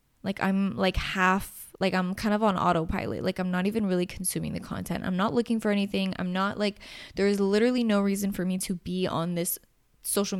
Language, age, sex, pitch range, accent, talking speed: English, 20-39, female, 175-215 Hz, American, 220 wpm